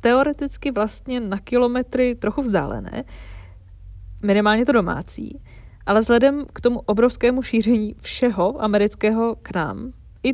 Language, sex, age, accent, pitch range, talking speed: Czech, female, 20-39, native, 185-225 Hz, 115 wpm